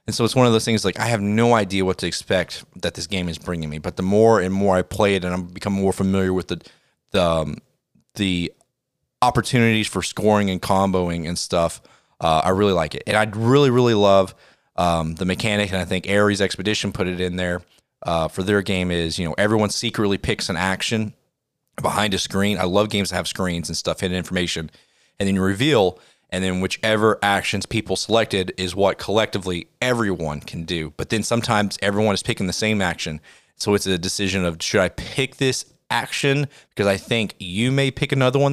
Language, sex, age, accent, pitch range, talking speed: English, male, 30-49, American, 90-110 Hz, 210 wpm